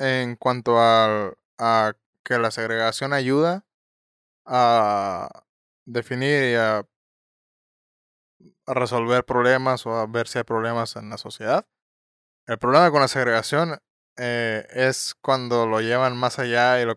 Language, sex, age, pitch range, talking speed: Spanish, male, 20-39, 110-130 Hz, 125 wpm